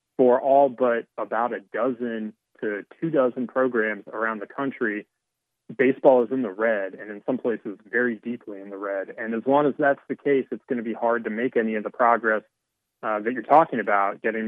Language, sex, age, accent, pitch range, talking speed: English, male, 30-49, American, 110-130 Hz, 205 wpm